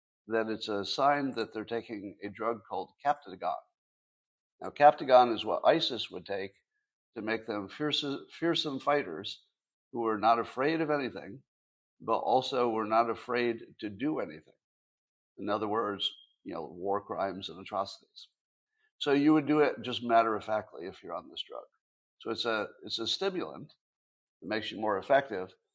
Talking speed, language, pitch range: 160 wpm, English, 110-145 Hz